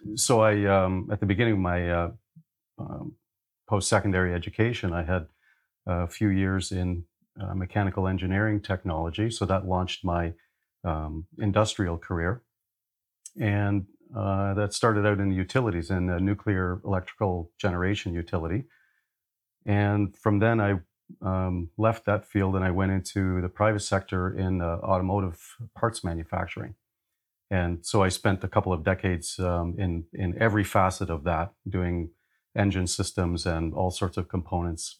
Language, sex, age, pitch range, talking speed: English, male, 40-59, 90-105 Hz, 145 wpm